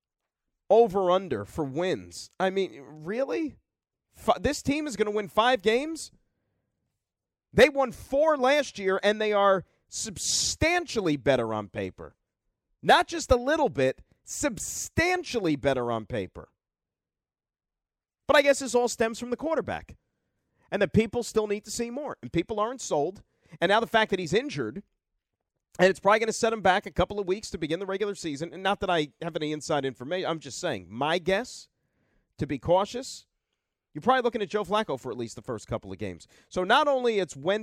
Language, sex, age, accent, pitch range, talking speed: English, male, 40-59, American, 150-220 Hz, 185 wpm